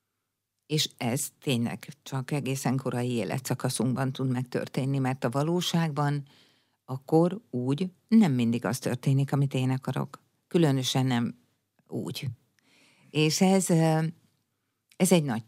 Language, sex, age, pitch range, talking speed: Hungarian, female, 50-69, 135-160 Hz, 110 wpm